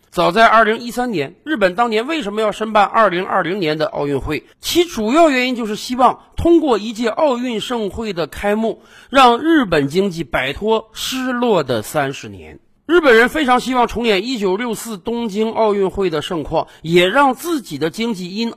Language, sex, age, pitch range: Chinese, male, 50-69, 180-265 Hz